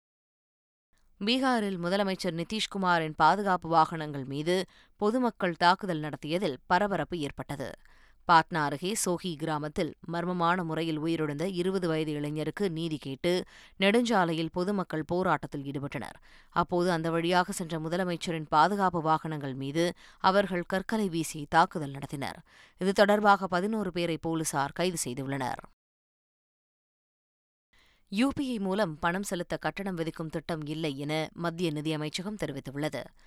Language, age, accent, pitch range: Tamil, 20-39, native, 155-185 Hz